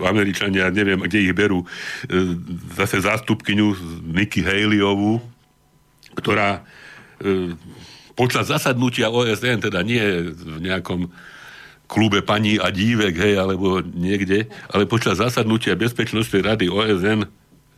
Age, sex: 60-79, male